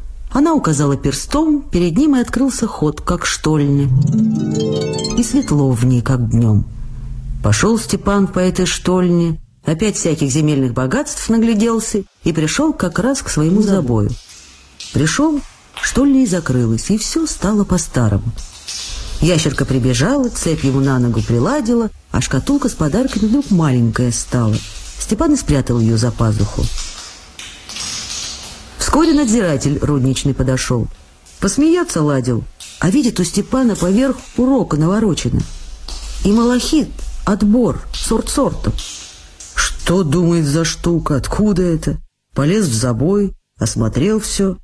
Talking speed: 120 wpm